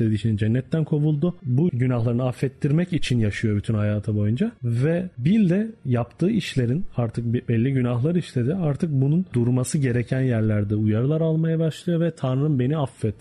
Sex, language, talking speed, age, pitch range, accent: male, Turkish, 150 wpm, 40-59, 110-140 Hz, native